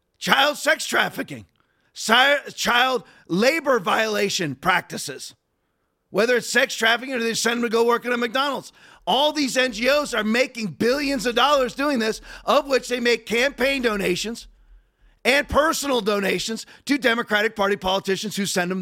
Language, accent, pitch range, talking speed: English, American, 230-280 Hz, 150 wpm